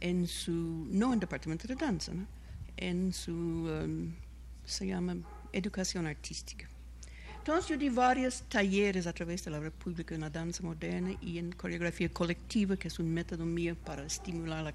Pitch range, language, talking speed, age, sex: 165-240 Hz, Spanish, 170 wpm, 60-79, female